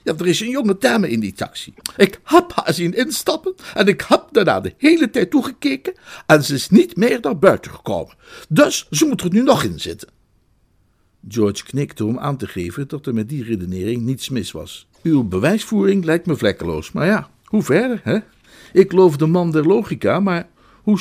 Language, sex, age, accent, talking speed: Dutch, male, 60-79, Dutch, 200 wpm